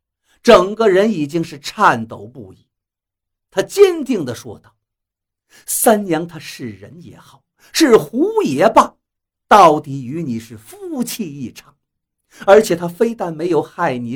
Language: Chinese